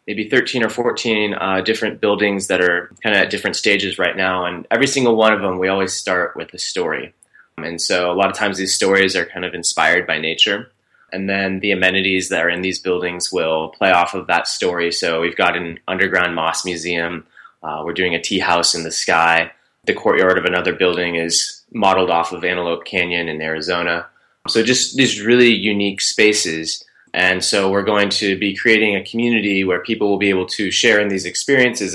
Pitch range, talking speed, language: 90-100 Hz, 210 wpm, English